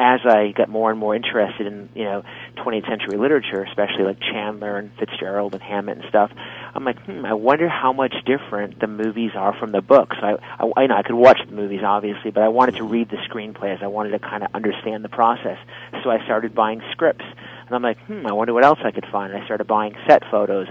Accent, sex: American, male